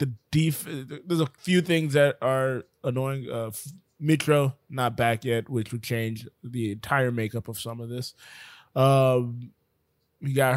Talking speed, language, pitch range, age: 155 wpm, English, 125-150 Hz, 20-39